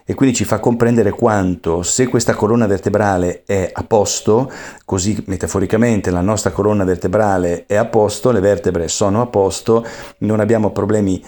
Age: 40-59